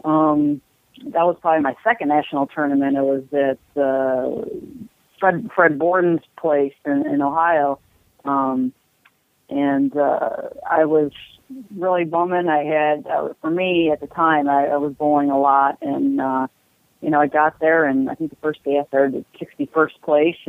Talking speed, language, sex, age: 165 wpm, English, female, 40-59